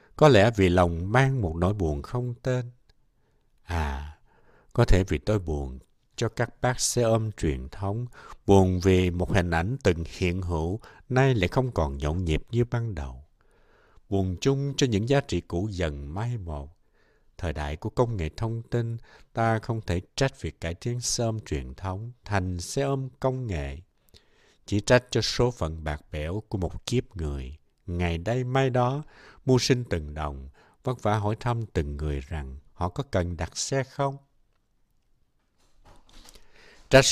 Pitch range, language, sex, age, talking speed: 85-120 Hz, Vietnamese, male, 60-79, 170 wpm